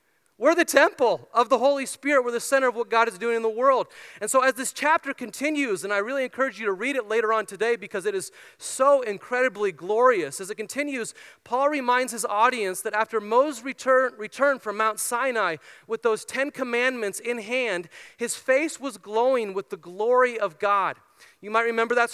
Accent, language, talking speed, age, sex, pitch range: American, English, 205 wpm, 30-49, male, 210-255 Hz